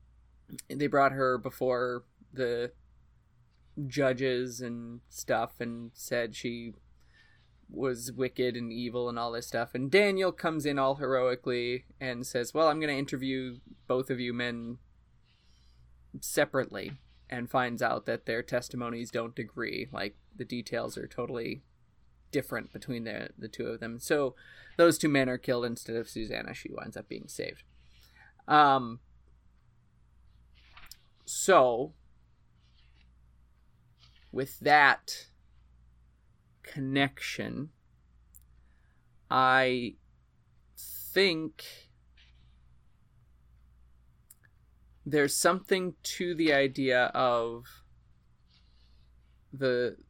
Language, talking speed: English, 100 wpm